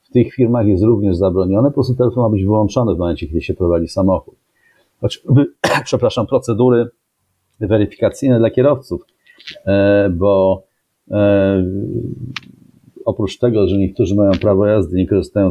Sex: male